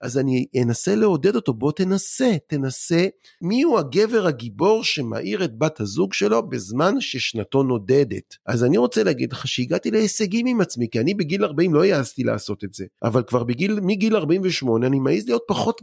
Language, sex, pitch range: Hebrew, male, 125-185 Hz